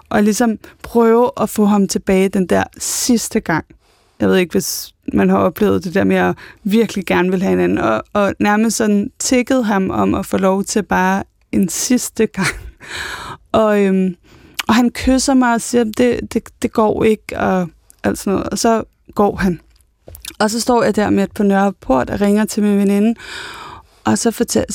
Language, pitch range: Danish, 190-230 Hz